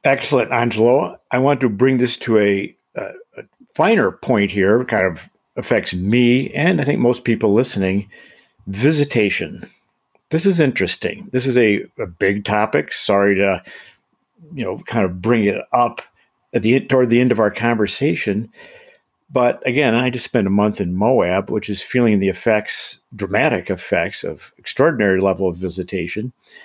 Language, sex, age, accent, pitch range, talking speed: English, male, 50-69, American, 100-130 Hz, 160 wpm